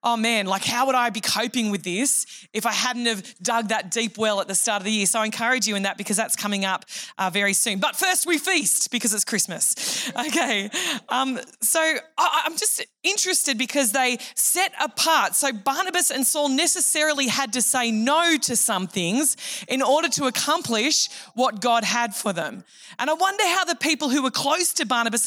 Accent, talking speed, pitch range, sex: Australian, 205 wpm, 225-290 Hz, female